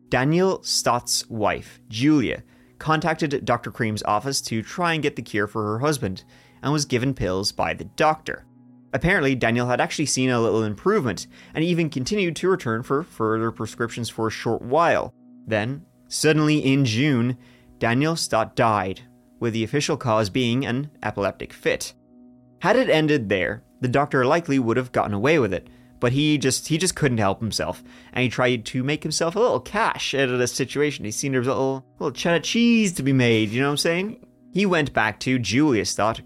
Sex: male